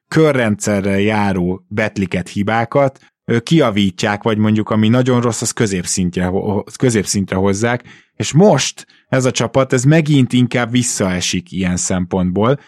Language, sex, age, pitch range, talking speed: Hungarian, male, 20-39, 95-120 Hz, 120 wpm